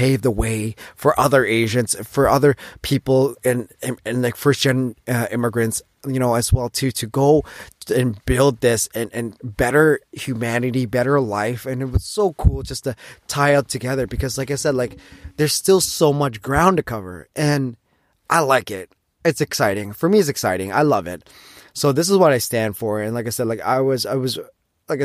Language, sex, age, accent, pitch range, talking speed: English, male, 20-39, American, 110-140 Hz, 205 wpm